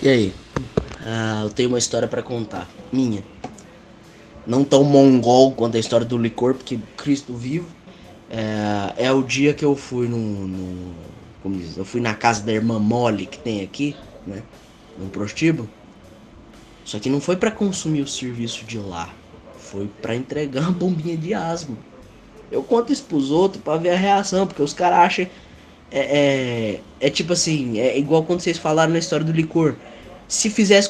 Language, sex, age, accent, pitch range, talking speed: Portuguese, male, 10-29, Brazilian, 115-175 Hz, 175 wpm